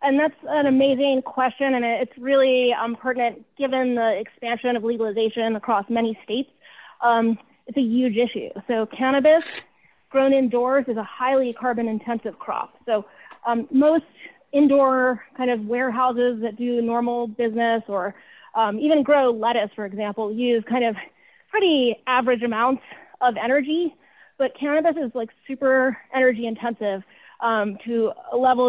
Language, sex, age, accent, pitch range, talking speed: English, female, 30-49, American, 225-265 Hz, 145 wpm